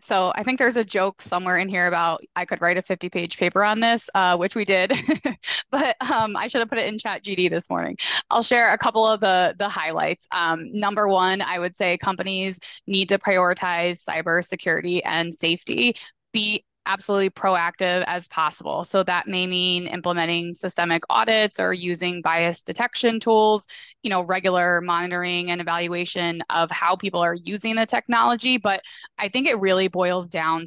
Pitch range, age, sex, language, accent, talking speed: 175-205 Hz, 20-39, female, English, American, 180 wpm